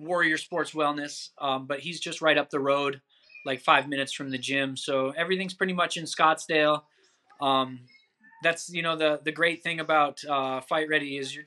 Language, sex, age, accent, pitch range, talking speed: English, male, 20-39, American, 145-170 Hz, 195 wpm